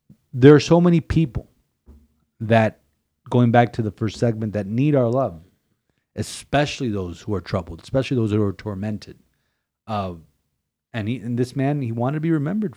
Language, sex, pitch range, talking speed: English, male, 100-130 Hz, 175 wpm